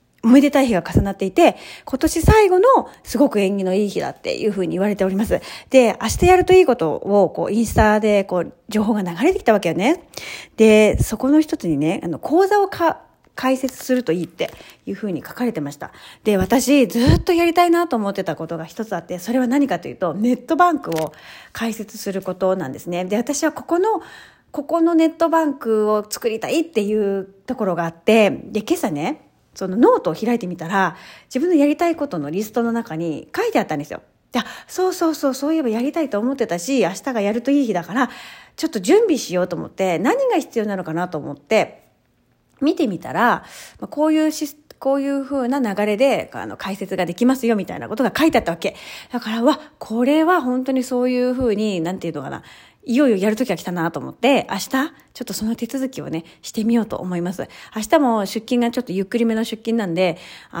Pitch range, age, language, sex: 195-280 Hz, 30-49, Japanese, female